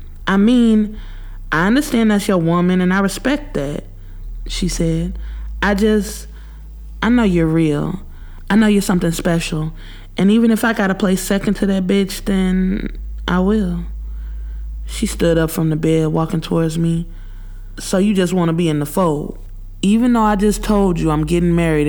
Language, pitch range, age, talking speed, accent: English, 145-185 Hz, 20-39, 180 wpm, American